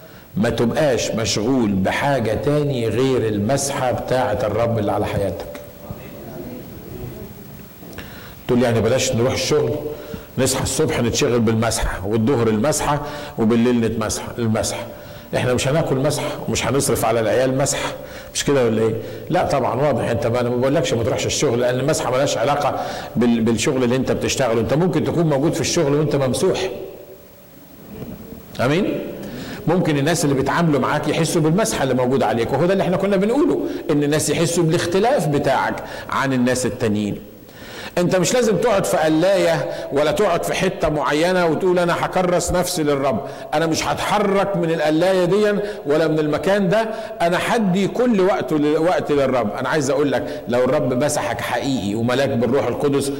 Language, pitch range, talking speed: Arabic, 120-165 Hz, 150 wpm